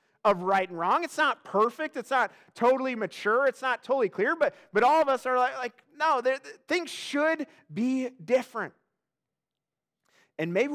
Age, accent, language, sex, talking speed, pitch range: 30-49, American, English, male, 165 wpm, 150-220 Hz